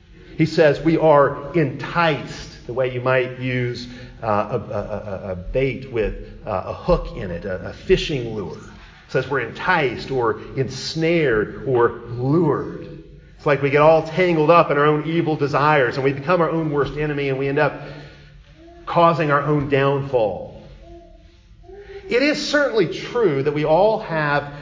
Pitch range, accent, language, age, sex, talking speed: 135-185 Hz, American, English, 40-59, male, 165 wpm